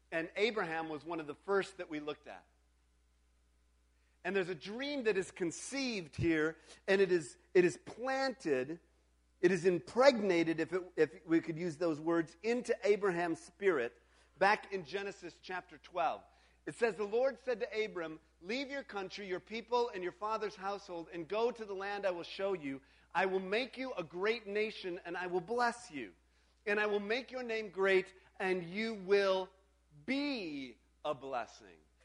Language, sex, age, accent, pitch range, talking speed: English, male, 50-69, American, 135-215 Hz, 175 wpm